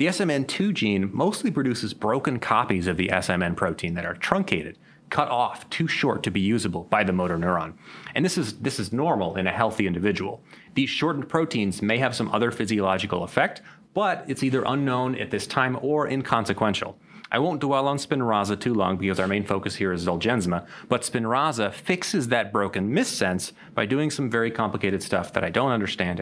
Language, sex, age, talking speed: English, male, 30-49, 190 wpm